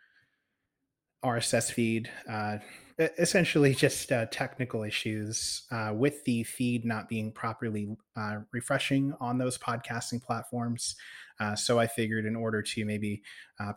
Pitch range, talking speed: 110-125 Hz, 130 wpm